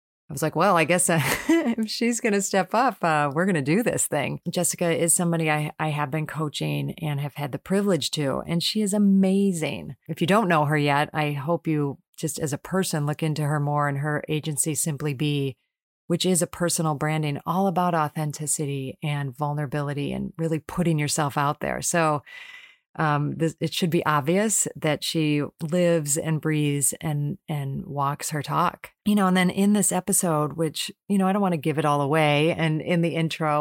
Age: 30-49